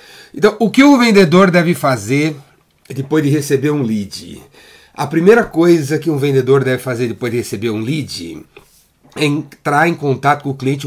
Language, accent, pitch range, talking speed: Portuguese, Brazilian, 125-155 Hz, 175 wpm